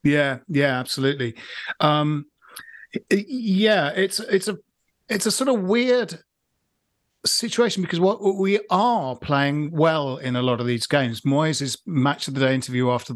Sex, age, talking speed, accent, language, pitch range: male, 40-59, 150 wpm, British, English, 130-180 Hz